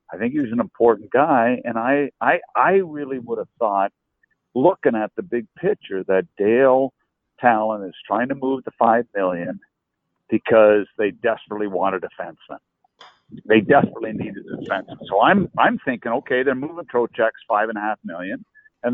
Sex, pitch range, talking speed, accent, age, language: male, 110-140 Hz, 175 wpm, American, 60-79, English